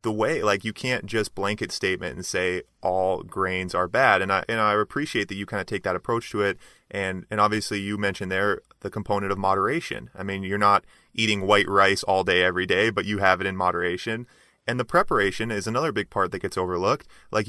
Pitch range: 95-120 Hz